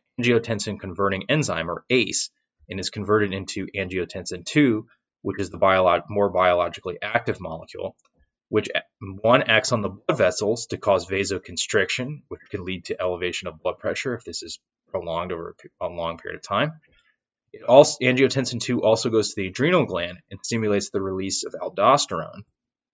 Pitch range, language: 100-125 Hz, English